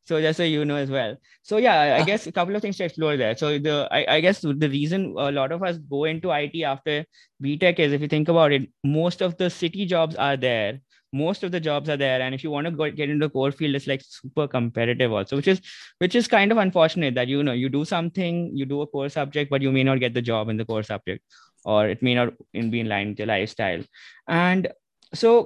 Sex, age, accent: male, 20-39, Indian